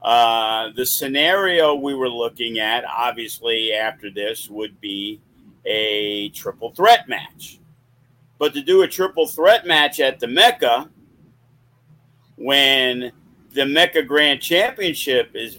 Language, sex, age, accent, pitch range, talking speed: English, male, 50-69, American, 120-150 Hz, 125 wpm